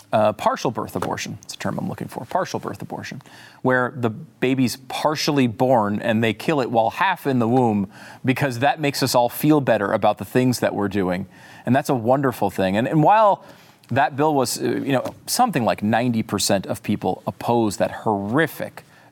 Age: 40-59